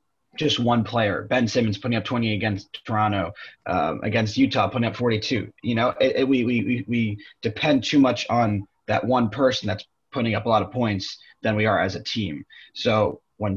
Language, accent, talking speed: English, American, 190 wpm